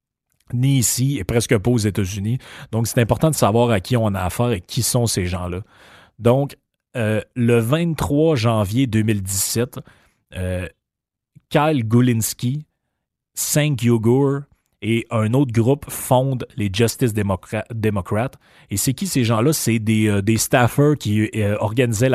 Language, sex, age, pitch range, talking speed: French, male, 30-49, 105-125 Hz, 150 wpm